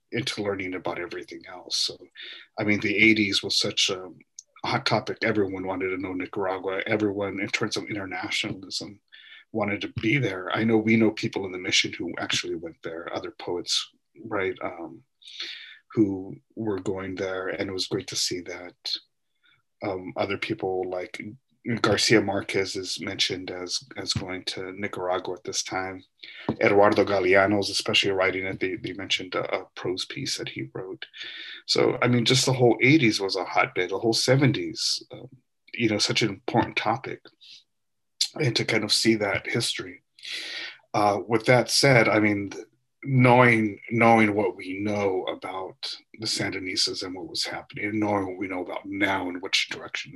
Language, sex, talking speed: English, male, 170 wpm